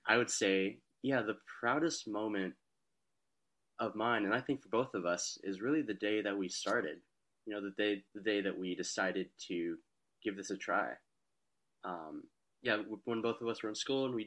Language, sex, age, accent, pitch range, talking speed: English, male, 20-39, American, 95-110 Hz, 200 wpm